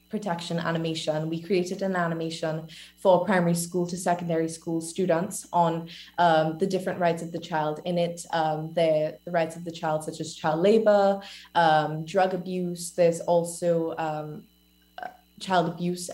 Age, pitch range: 20-39, 170-190 Hz